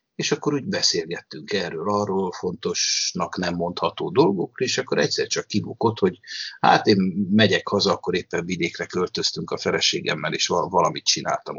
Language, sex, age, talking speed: Hungarian, male, 60-79, 155 wpm